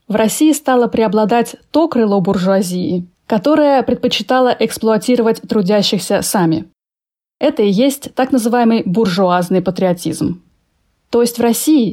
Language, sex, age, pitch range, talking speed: Russian, female, 20-39, 190-245 Hz, 115 wpm